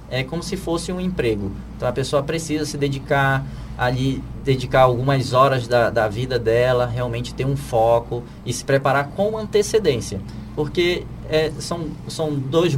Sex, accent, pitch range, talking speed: male, Brazilian, 120-150 Hz, 155 wpm